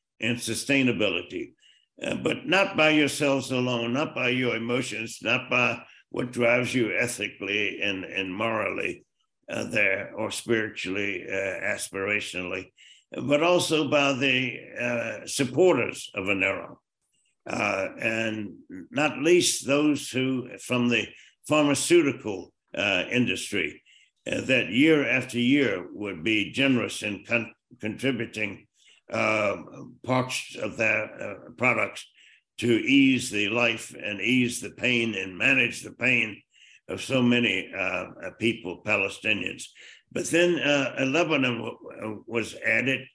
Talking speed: 120 wpm